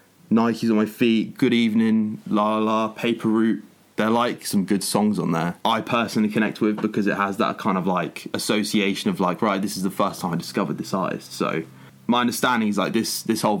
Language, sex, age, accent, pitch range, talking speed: English, male, 20-39, British, 95-120 Hz, 220 wpm